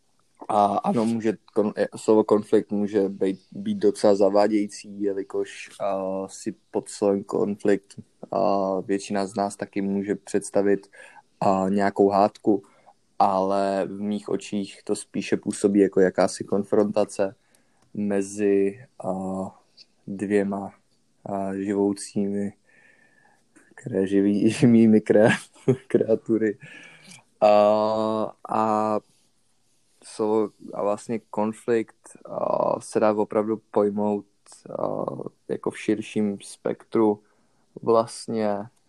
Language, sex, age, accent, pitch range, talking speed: Czech, male, 20-39, native, 100-105 Hz, 95 wpm